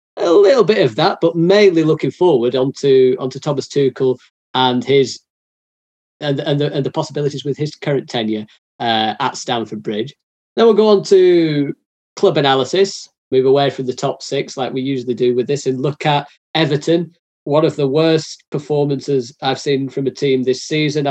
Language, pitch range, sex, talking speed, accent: English, 125-165 Hz, male, 180 wpm, British